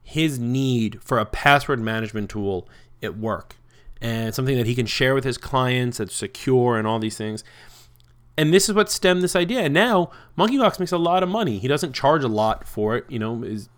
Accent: American